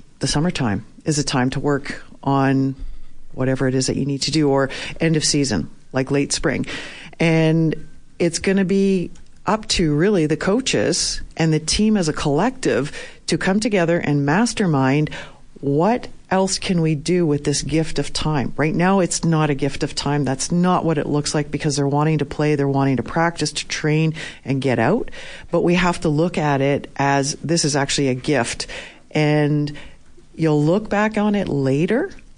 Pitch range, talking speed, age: 140-165 Hz, 190 wpm, 40-59